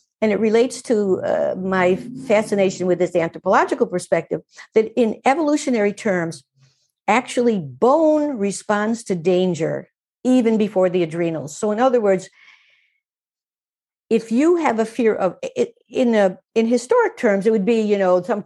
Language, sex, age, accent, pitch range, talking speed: English, female, 50-69, American, 180-230 Hz, 150 wpm